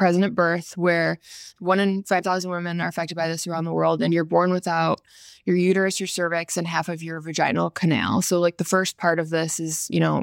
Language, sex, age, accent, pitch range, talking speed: English, female, 20-39, American, 165-185 Hz, 230 wpm